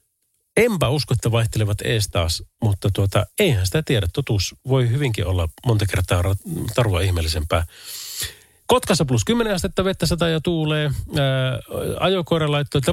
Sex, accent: male, native